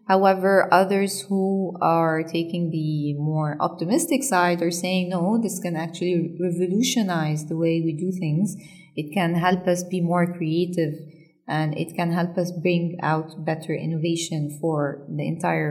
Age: 20-39